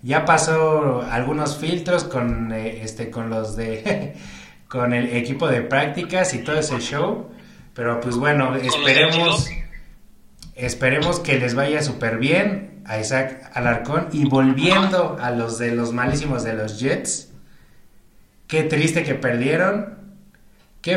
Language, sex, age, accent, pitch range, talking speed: Spanish, male, 30-49, Mexican, 125-170 Hz, 135 wpm